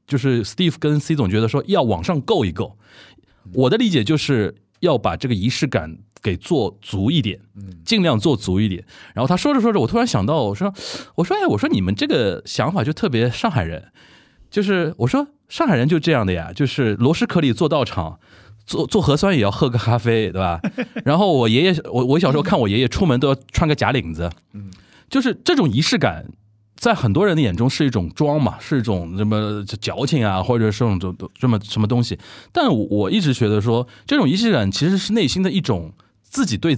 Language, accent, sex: Chinese, native, male